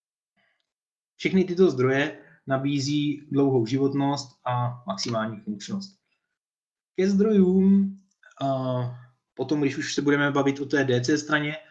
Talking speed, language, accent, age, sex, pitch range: 115 wpm, Czech, native, 20-39, male, 120-160 Hz